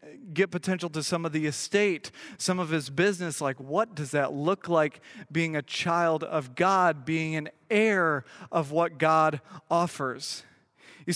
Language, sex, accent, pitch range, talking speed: English, male, American, 155-190 Hz, 160 wpm